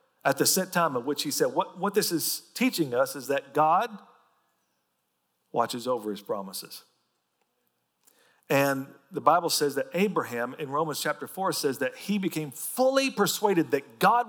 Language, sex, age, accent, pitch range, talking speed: English, male, 50-69, American, 155-215 Hz, 165 wpm